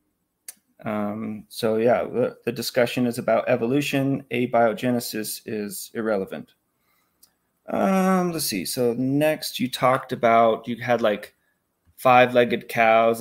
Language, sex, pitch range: English, male, 110-130 Hz